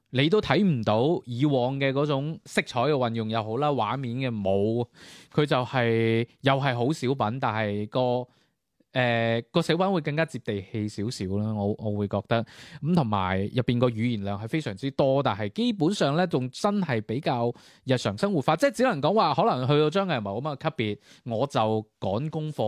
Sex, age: male, 20-39